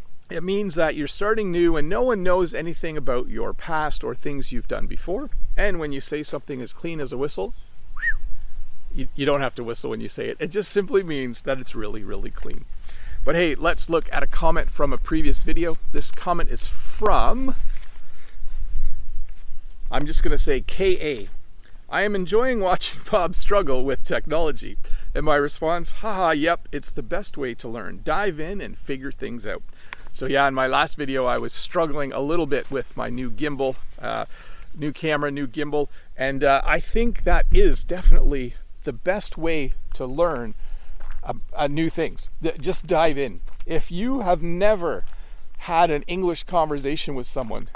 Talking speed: 180 wpm